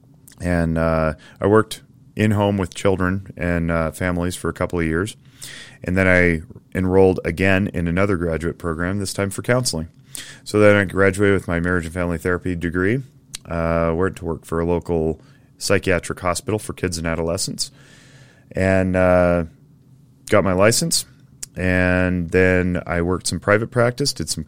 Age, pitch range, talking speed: 30-49, 85-110 Hz, 165 wpm